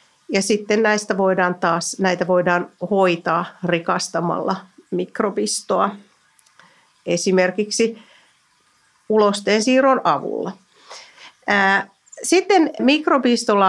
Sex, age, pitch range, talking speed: female, 50-69, 180-235 Hz, 65 wpm